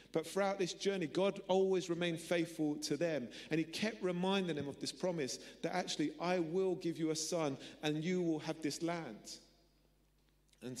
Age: 40-59